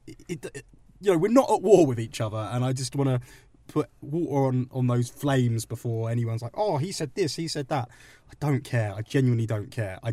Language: English